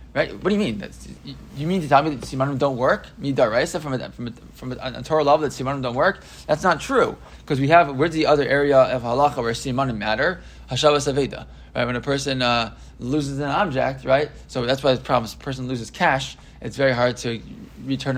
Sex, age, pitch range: male, 20-39, 120-150 Hz